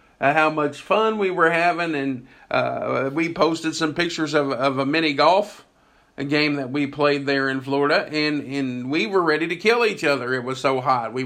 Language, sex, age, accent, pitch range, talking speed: English, male, 50-69, American, 130-170 Hz, 210 wpm